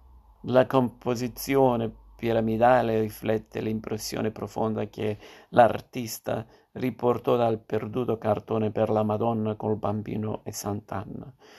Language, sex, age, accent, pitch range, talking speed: Italian, male, 50-69, native, 105-120 Hz, 100 wpm